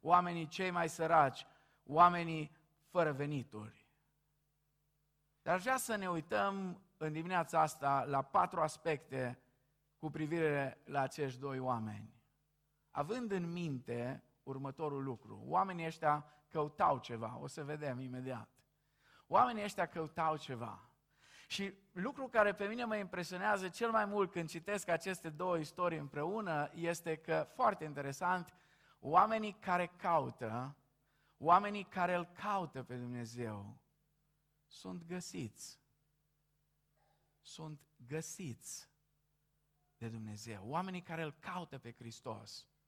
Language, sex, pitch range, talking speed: Romanian, male, 140-180 Hz, 115 wpm